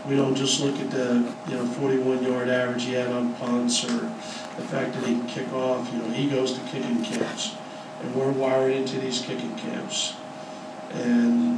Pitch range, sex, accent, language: 120-130 Hz, male, American, English